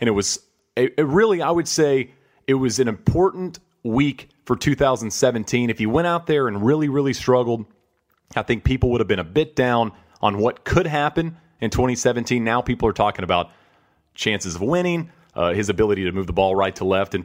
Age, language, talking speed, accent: 30-49, English, 205 wpm, American